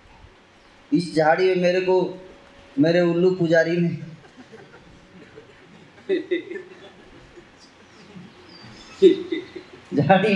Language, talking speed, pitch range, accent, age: Hindi, 60 wpm, 135-175 Hz, native, 20-39